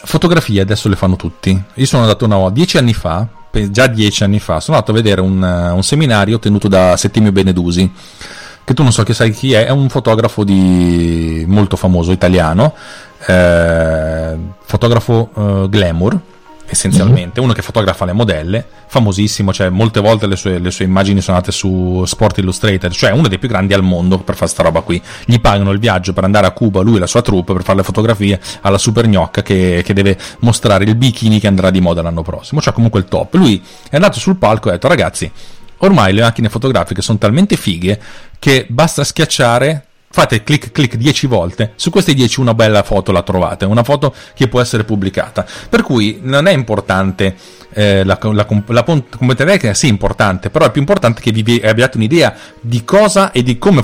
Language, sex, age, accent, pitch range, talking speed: Italian, male, 30-49, native, 95-120 Hz, 195 wpm